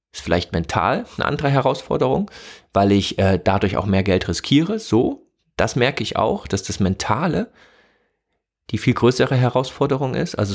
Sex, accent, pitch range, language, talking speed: male, German, 105-145 Hz, German, 160 wpm